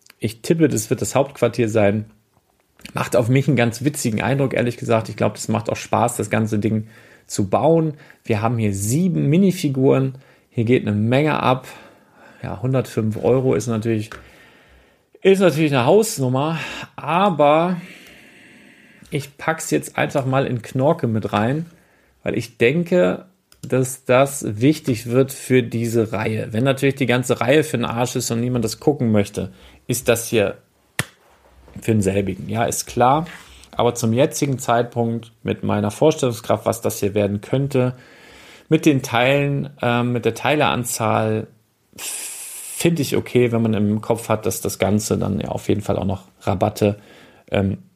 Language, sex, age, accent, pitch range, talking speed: German, male, 40-59, German, 110-140 Hz, 160 wpm